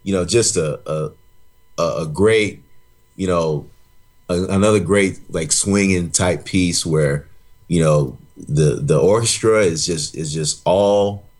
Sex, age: male, 30-49